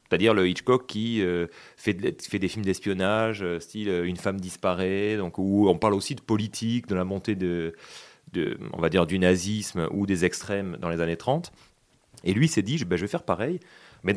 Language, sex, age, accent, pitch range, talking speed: French, male, 30-49, French, 90-115 Hz, 225 wpm